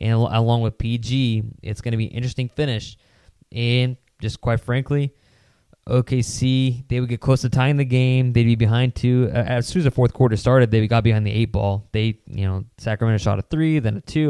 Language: English